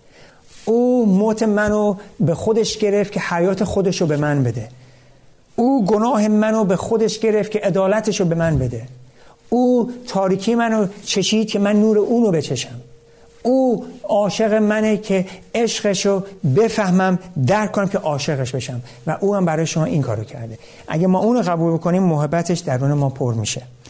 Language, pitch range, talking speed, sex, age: Persian, 125-185 Hz, 165 wpm, male, 50-69